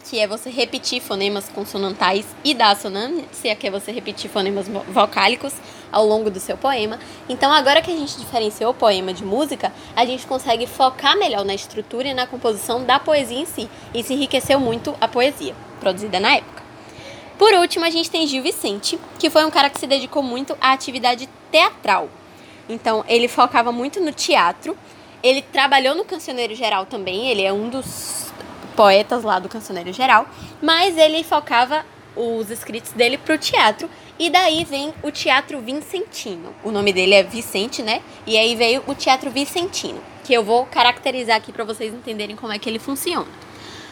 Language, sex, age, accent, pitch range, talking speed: Portuguese, female, 10-29, Brazilian, 210-280 Hz, 180 wpm